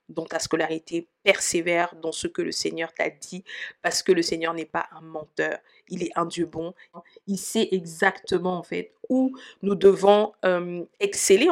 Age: 50-69